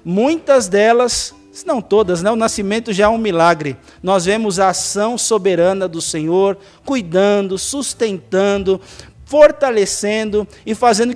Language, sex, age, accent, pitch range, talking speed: Portuguese, male, 50-69, Brazilian, 185-235 Hz, 130 wpm